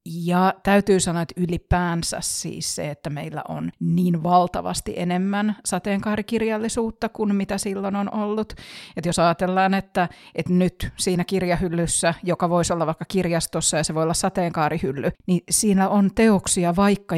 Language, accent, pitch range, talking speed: Finnish, native, 165-200 Hz, 145 wpm